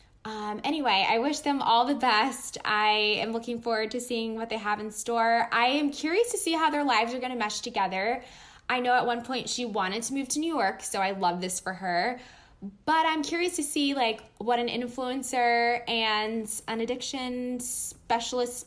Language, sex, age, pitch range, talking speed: English, female, 10-29, 195-245 Hz, 205 wpm